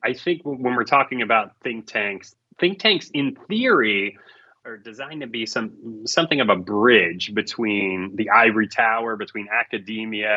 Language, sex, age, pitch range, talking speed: English, male, 30-49, 105-145 Hz, 155 wpm